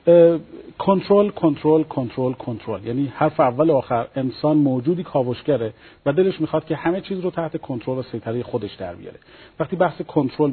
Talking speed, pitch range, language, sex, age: 160 wpm, 130-170 Hz, Persian, male, 50-69